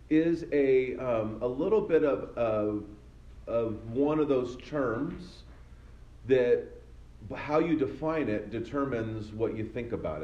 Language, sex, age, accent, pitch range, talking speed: English, male, 40-59, American, 100-140 Hz, 135 wpm